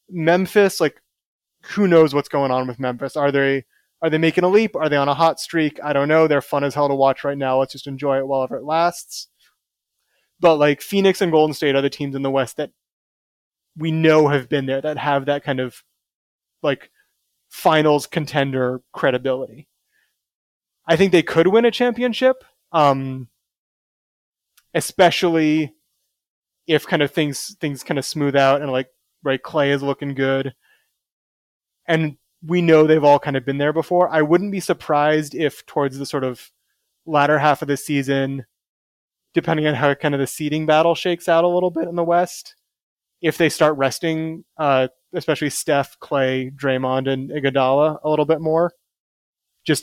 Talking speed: 180 wpm